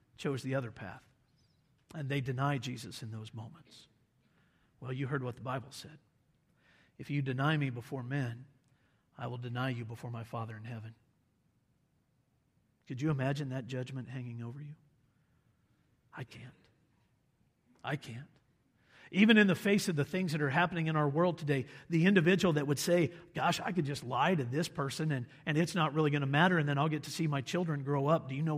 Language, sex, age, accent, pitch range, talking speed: English, male, 50-69, American, 125-155 Hz, 195 wpm